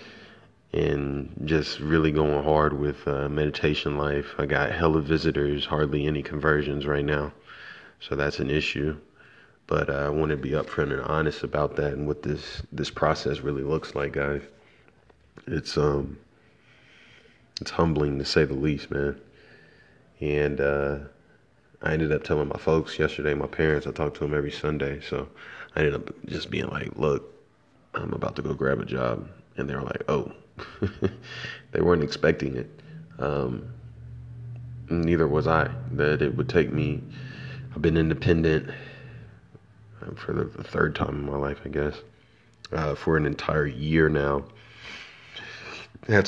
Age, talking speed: 30-49, 155 wpm